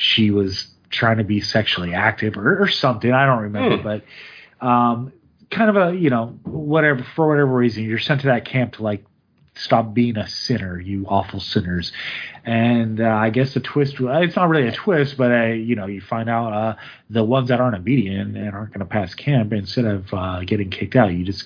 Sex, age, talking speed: male, 30-49, 215 wpm